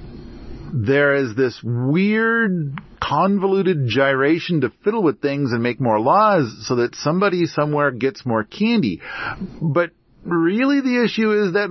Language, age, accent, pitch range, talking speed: English, 50-69, American, 110-160 Hz, 140 wpm